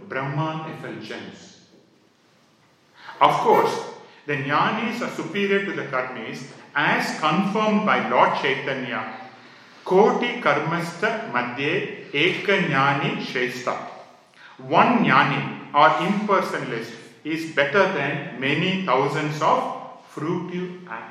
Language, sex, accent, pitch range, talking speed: English, male, Indian, 135-185 Hz, 90 wpm